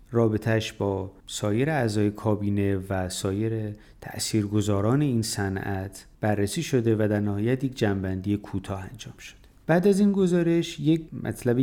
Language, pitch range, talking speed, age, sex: Persian, 100-125 Hz, 135 wpm, 30-49, male